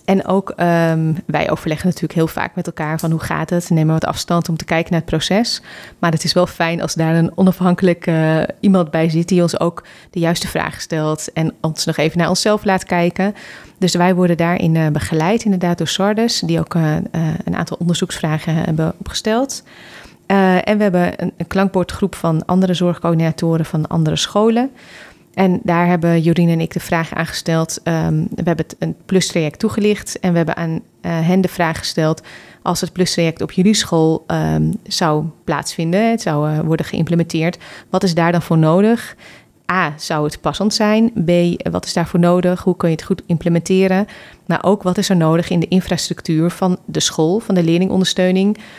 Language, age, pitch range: Dutch, 30-49, 165-185 Hz